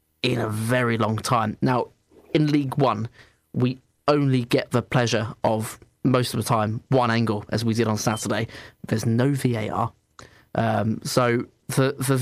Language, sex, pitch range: English, male, 115-150 Hz